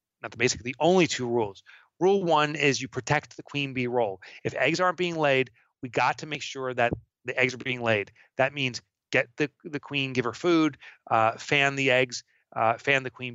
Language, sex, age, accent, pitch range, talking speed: English, male, 30-49, American, 120-150 Hz, 220 wpm